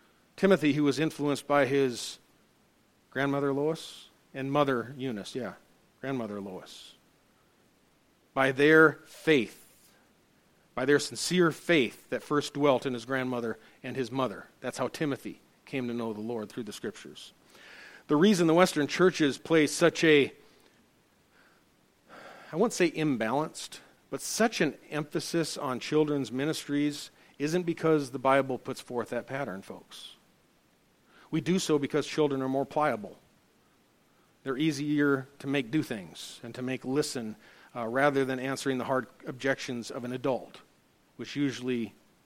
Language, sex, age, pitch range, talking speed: English, male, 50-69, 130-155 Hz, 140 wpm